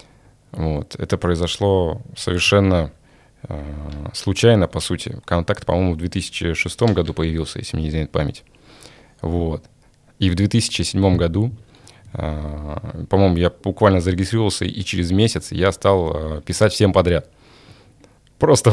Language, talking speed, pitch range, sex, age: Russian, 125 wpm, 85-105 Hz, male, 20-39